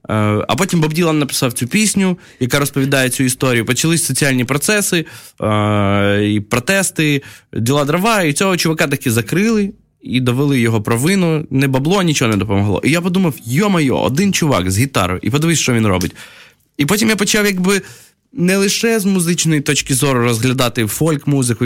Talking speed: 160 wpm